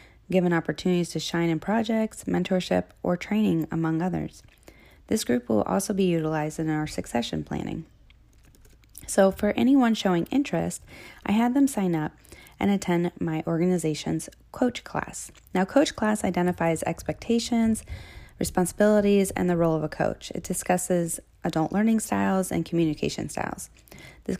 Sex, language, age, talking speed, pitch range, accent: female, English, 20-39, 145 wpm, 155-200 Hz, American